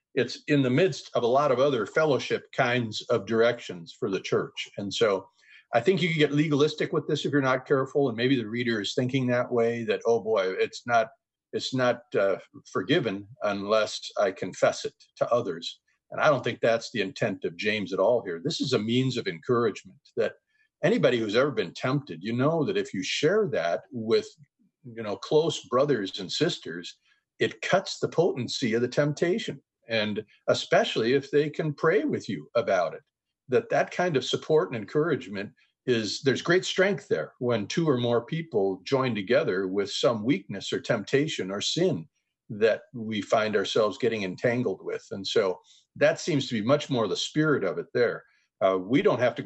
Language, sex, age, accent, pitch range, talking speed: English, male, 50-69, American, 115-185 Hz, 195 wpm